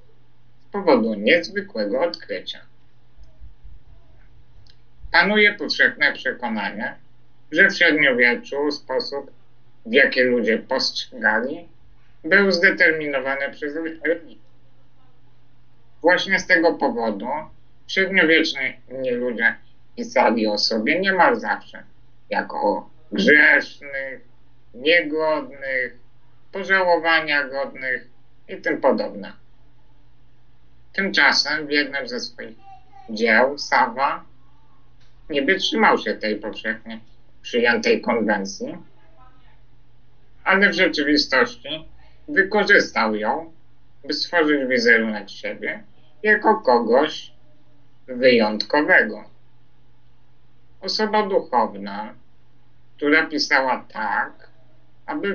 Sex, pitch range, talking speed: male, 120-170 Hz, 75 wpm